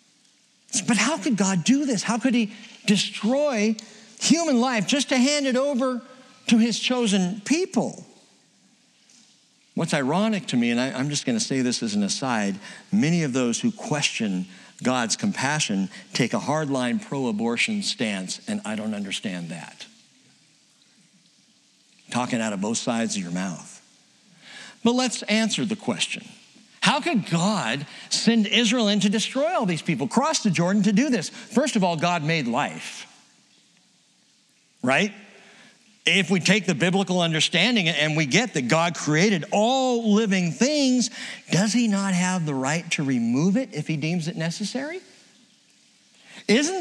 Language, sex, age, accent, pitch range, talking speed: English, male, 60-79, American, 175-240 Hz, 150 wpm